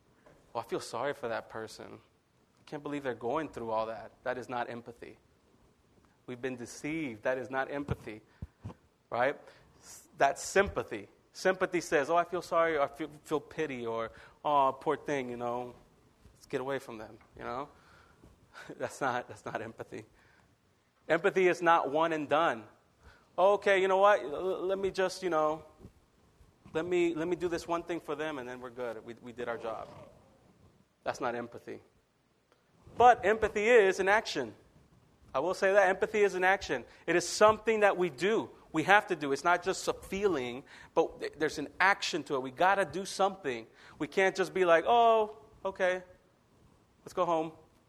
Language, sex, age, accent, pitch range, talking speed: English, male, 30-49, American, 125-185 Hz, 180 wpm